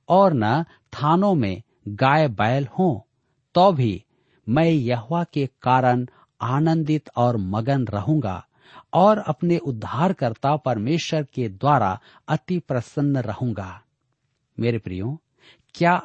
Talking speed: 110 wpm